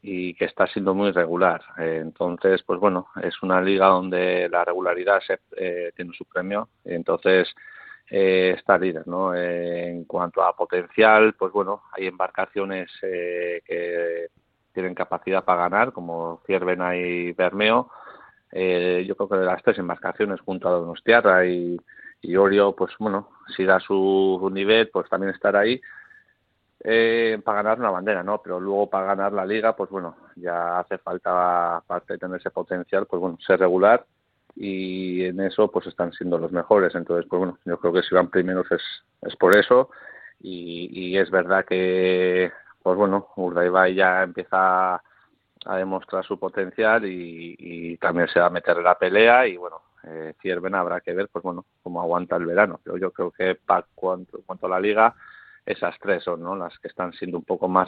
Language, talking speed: Spanish, 180 wpm